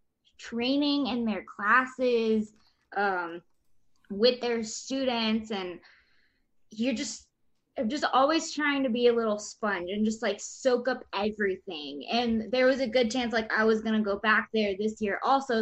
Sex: female